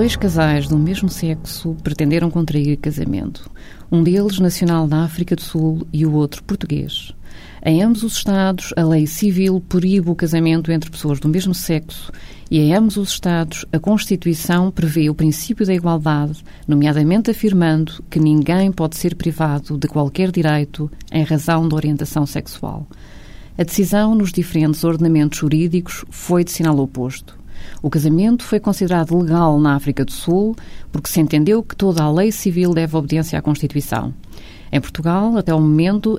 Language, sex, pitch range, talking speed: Portuguese, female, 150-175 Hz, 160 wpm